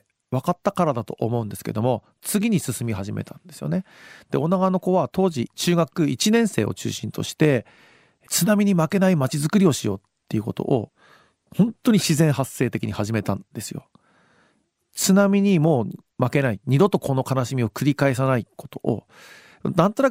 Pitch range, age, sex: 120-185 Hz, 40-59, male